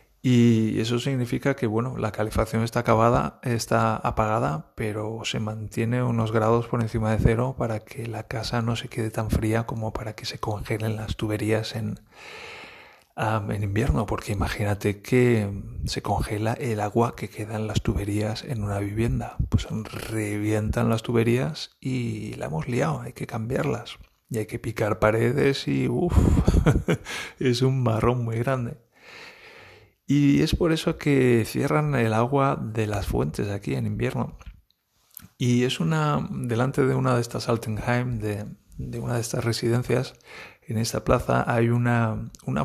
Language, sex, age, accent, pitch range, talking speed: Spanish, male, 40-59, Spanish, 110-125 Hz, 160 wpm